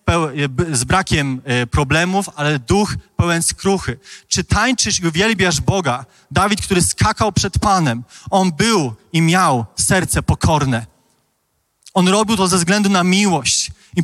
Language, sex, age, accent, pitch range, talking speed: Polish, male, 30-49, native, 135-200 Hz, 135 wpm